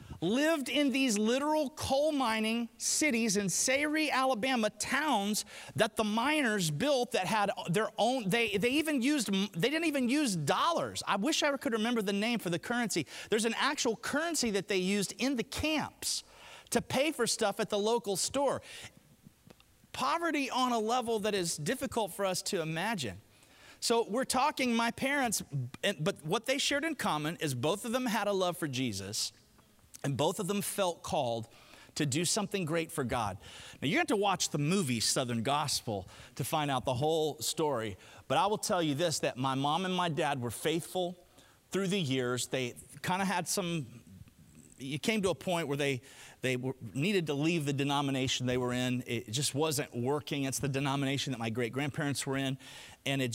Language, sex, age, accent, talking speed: English, male, 30-49, American, 190 wpm